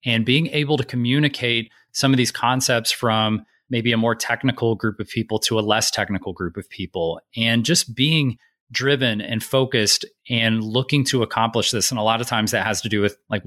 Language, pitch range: English, 110-135 Hz